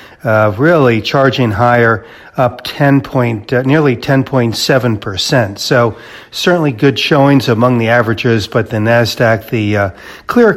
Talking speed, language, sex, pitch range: 130 wpm, English, male, 115-135 Hz